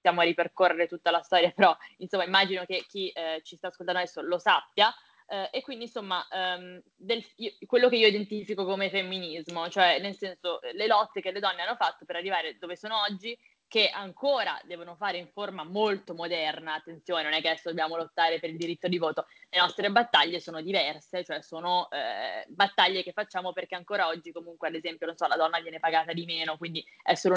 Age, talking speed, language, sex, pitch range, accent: 20-39, 205 wpm, Italian, female, 170-220 Hz, native